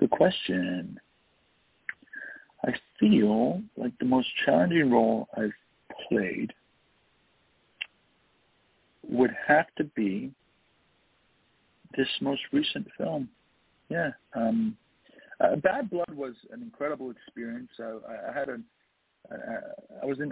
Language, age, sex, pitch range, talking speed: English, 50-69, male, 115-175 Hz, 95 wpm